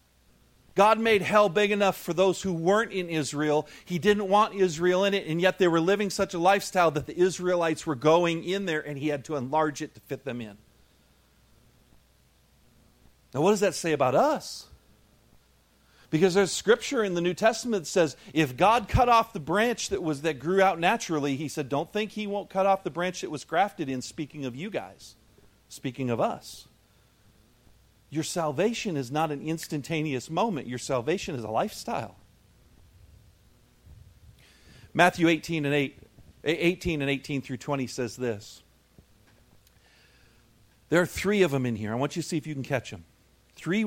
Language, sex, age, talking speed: English, male, 40-59, 180 wpm